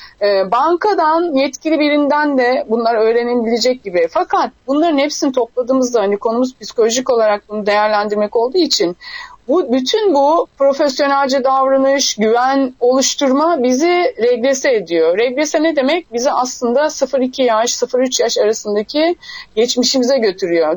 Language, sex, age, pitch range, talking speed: Turkish, female, 30-49, 225-295 Hz, 120 wpm